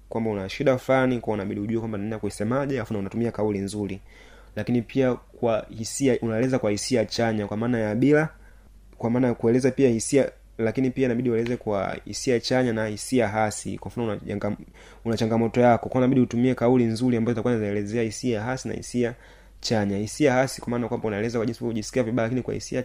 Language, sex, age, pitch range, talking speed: Swahili, male, 30-49, 105-125 Hz, 175 wpm